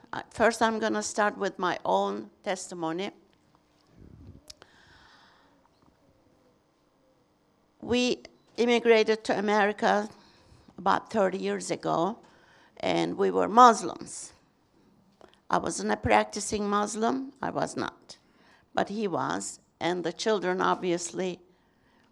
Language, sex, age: English, female, 60-79